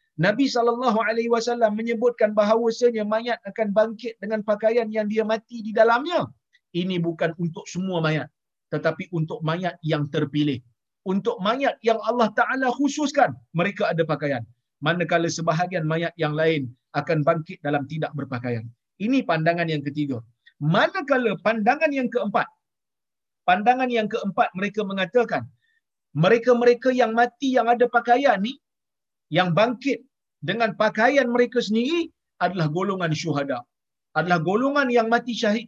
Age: 50-69